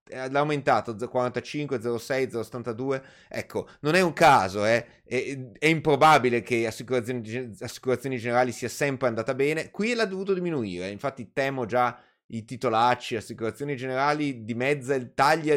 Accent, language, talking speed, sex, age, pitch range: native, Italian, 140 wpm, male, 30-49, 120-175 Hz